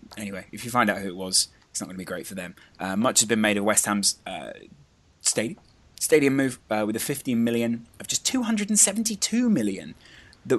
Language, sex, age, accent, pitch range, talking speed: English, male, 20-39, British, 100-130 Hz, 215 wpm